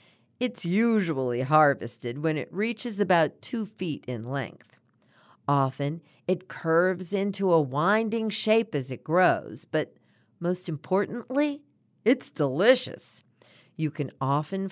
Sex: female